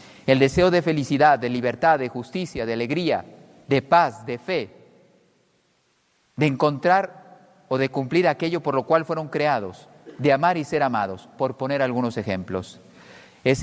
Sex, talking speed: male, 155 wpm